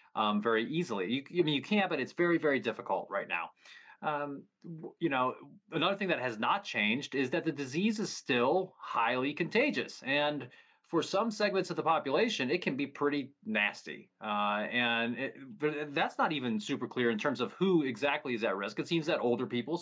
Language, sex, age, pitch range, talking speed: English, male, 30-49, 125-165 Hz, 200 wpm